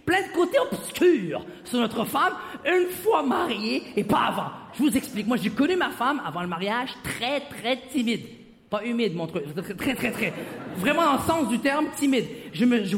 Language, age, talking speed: French, 40-59, 205 wpm